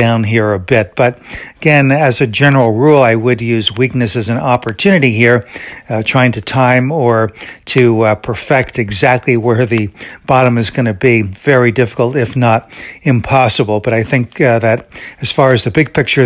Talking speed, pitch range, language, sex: 185 wpm, 115-130 Hz, English, male